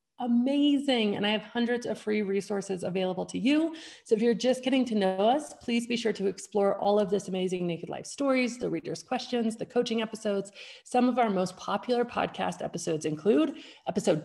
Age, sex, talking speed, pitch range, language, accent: 30-49, female, 195 wpm, 185-235 Hz, English, American